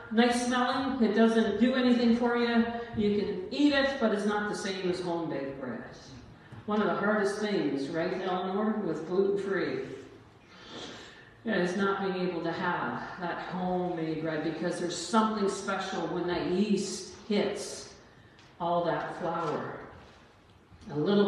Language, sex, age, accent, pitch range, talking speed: English, female, 50-69, American, 190-275 Hz, 145 wpm